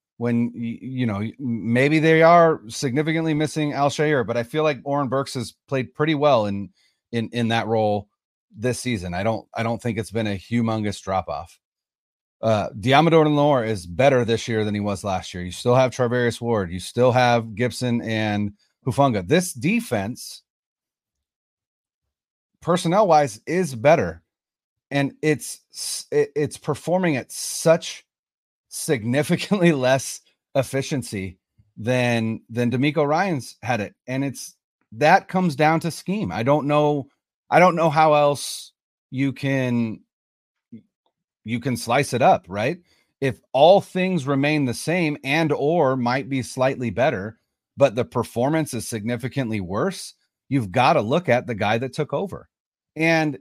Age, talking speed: 30-49, 150 wpm